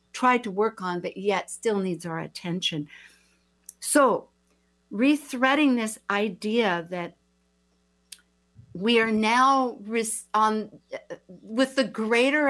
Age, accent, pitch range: 60-79, American, 170-235 Hz